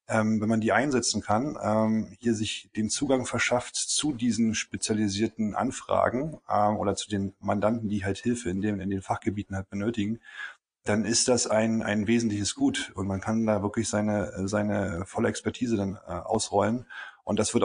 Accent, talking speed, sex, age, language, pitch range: German, 175 wpm, male, 30-49, German, 100-115 Hz